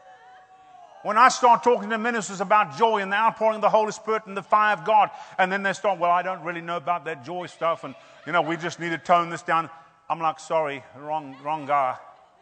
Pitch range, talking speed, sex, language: 170-245 Hz, 235 wpm, male, English